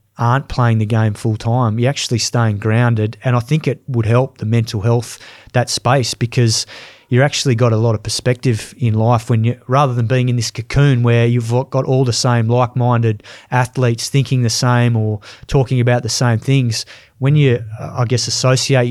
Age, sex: 30-49, male